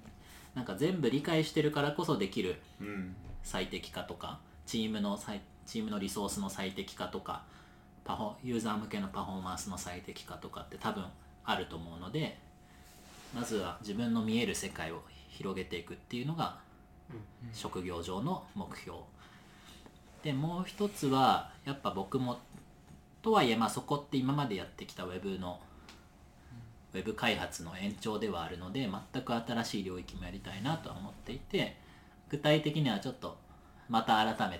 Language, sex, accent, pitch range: Japanese, male, native, 90-120 Hz